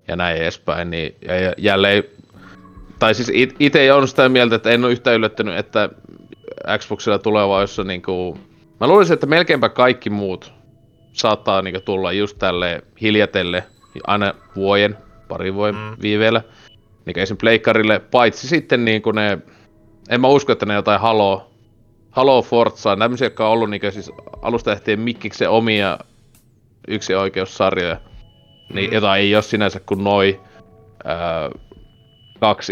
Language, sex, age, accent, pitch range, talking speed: Finnish, male, 30-49, native, 95-115 Hz, 140 wpm